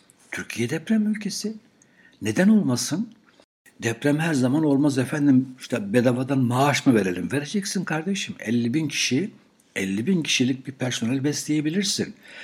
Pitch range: 120-195 Hz